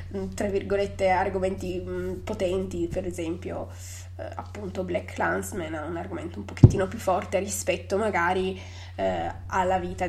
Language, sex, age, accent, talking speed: Italian, female, 20-39, native, 120 wpm